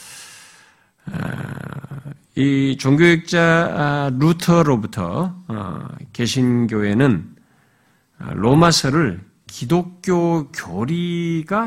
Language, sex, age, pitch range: Korean, male, 50-69, 115-175 Hz